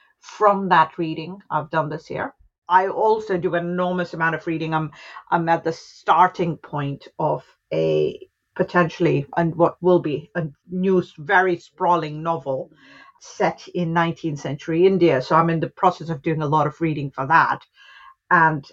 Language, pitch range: English, 155-185 Hz